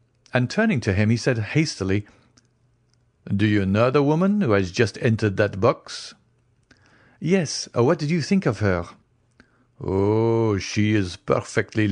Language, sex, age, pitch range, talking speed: English, male, 50-69, 105-135 Hz, 145 wpm